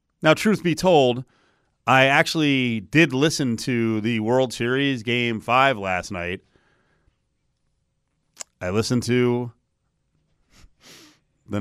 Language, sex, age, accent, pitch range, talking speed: English, male, 30-49, American, 100-140 Hz, 105 wpm